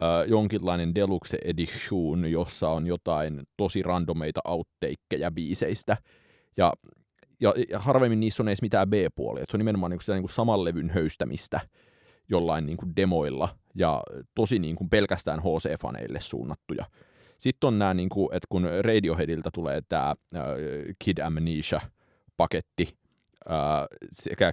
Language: Finnish